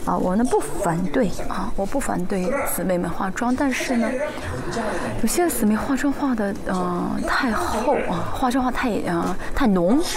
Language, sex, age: Chinese, female, 30-49